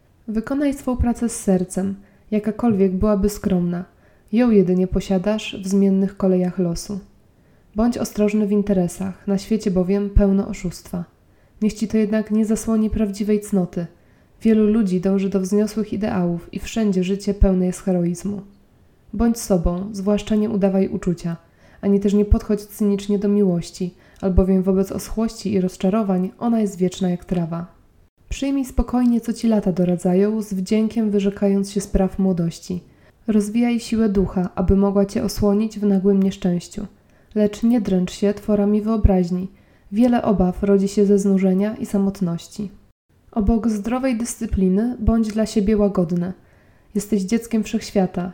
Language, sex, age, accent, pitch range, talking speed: Polish, female, 20-39, native, 190-215 Hz, 140 wpm